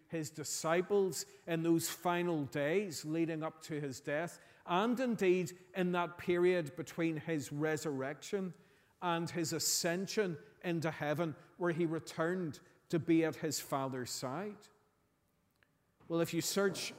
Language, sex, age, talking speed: English, male, 40-59, 130 wpm